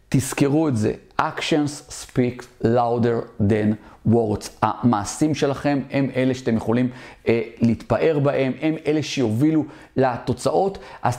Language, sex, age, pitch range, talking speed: Hebrew, male, 40-59, 120-150 Hz, 120 wpm